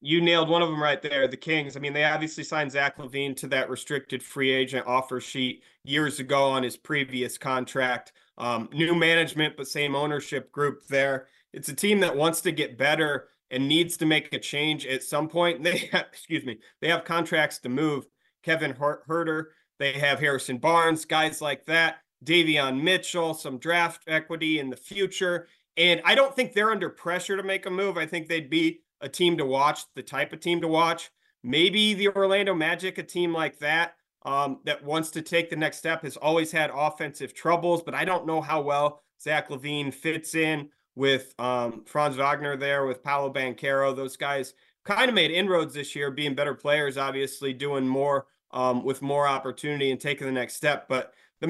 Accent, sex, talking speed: American, male, 195 wpm